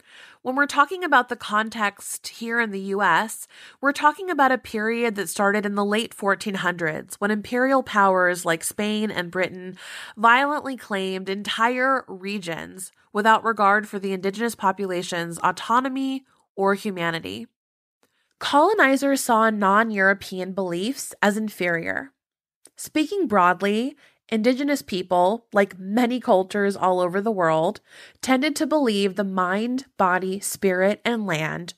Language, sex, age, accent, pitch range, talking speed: English, female, 20-39, American, 185-240 Hz, 130 wpm